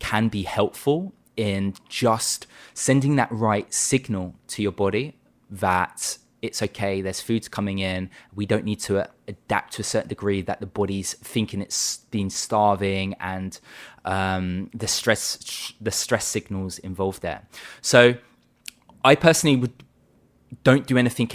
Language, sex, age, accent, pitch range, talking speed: English, male, 20-39, British, 100-115 Hz, 150 wpm